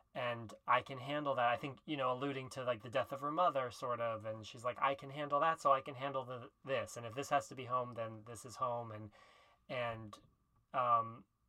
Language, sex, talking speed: English, male, 240 wpm